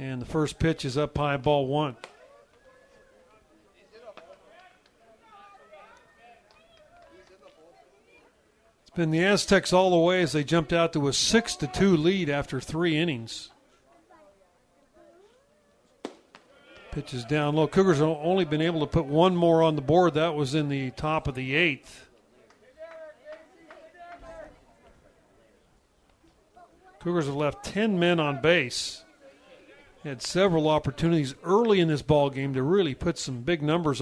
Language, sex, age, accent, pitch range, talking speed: English, male, 50-69, American, 145-180 Hz, 130 wpm